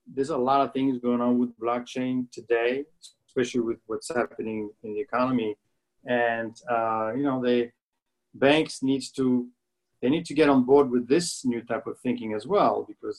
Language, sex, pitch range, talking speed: English, male, 120-145 Hz, 180 wpm